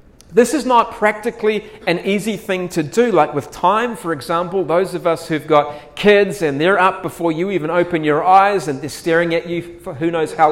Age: 40-59